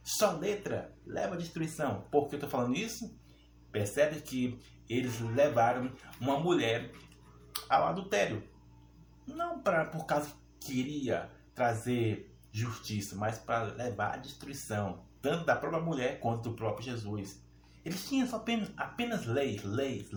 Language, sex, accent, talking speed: Portuguese, male, Brazilian, 135 wpm